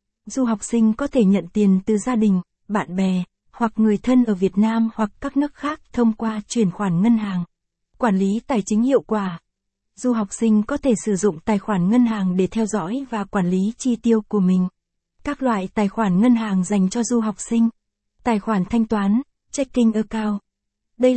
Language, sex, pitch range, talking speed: Vietnamese, female, 195-235 Hz, 205 wpm